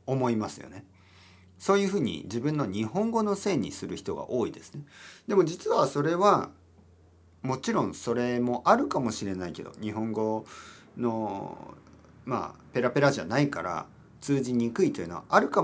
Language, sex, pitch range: Japanese, male, 110-160 Hz